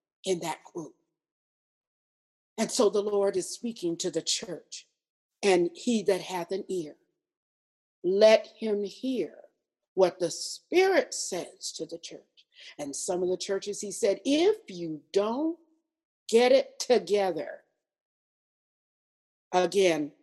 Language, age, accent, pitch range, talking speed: English, 50-69, American, 165-245 Hz, 125 wpm